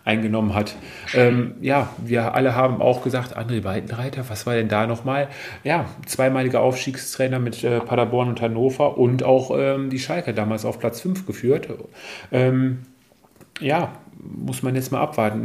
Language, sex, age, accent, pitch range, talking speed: German, male, 40-59, German, 115-130 Hz, 160 wpm